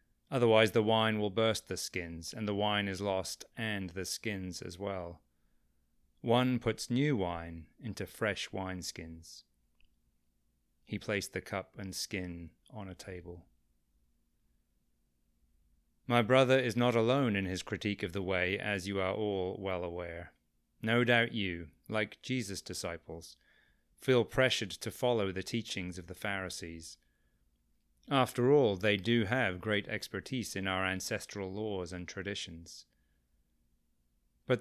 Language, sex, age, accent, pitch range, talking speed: English, male, 30-49, British, 80-110 Hz, 135 wpm